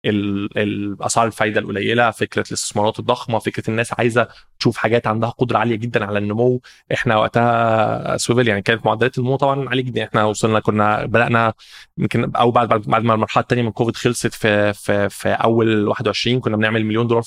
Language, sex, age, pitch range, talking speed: Arabic, male, 20-39, 110-120 Hz, 175 wpm